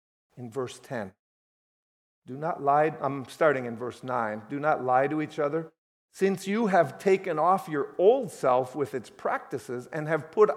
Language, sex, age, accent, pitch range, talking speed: English, male, 50-69, American, 120-165 Hz, 175 wpm